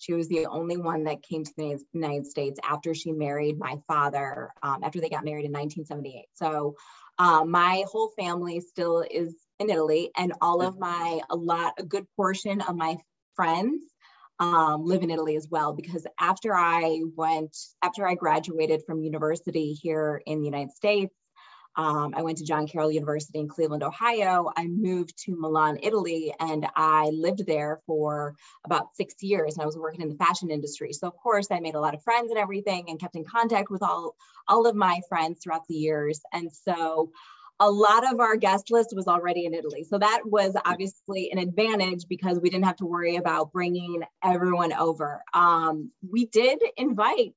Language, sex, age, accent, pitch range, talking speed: English, female, 20-39, American, 155-185 Hz, 190 wpm